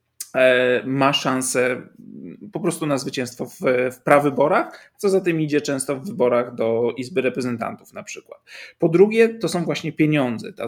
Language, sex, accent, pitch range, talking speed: Polish, male, native, 130-170 Hz, 150 wpm